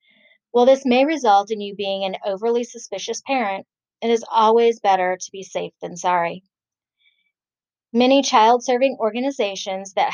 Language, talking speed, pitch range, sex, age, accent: English, 140 wpm, 185-235 Hz, female, 40-59, American